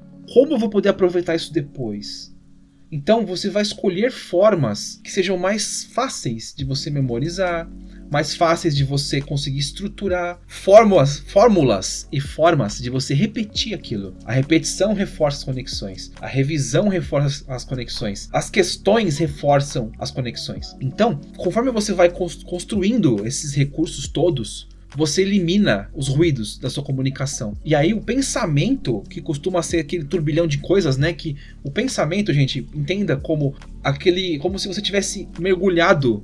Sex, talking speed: male, 145 wpm